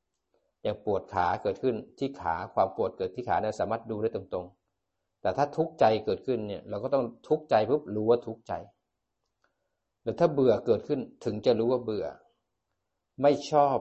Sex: male